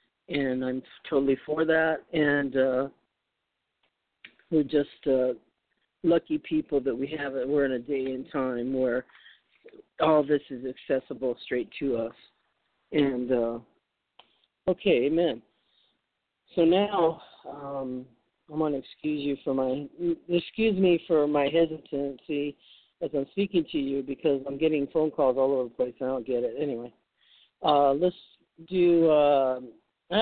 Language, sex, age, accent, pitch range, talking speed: English, male, 50-69, American, 130-160 Hz, 145 wpm